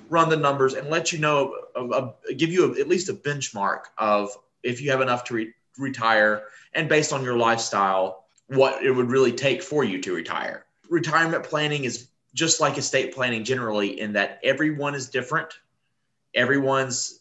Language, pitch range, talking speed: English, 110-145 Hz, 175 wpm